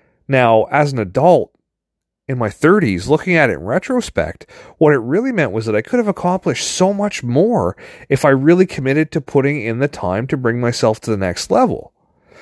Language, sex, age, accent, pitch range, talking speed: English, male, 30-49, American, 110-170 Hz, 200 wpm